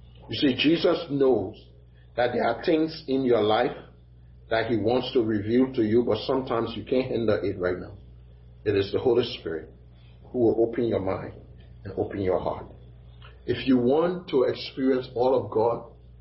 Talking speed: 180 wpm